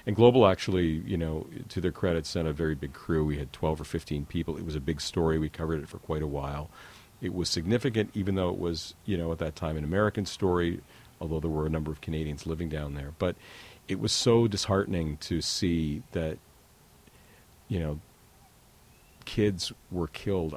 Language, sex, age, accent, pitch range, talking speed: English, male, 40-59, American, 75-95 Hz, 200 wpm